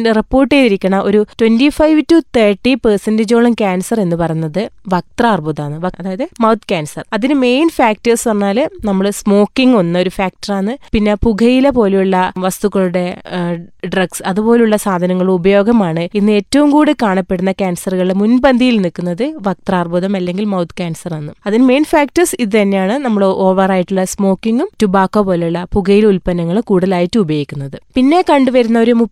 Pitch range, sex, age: 185-235 Hz, female, 30-49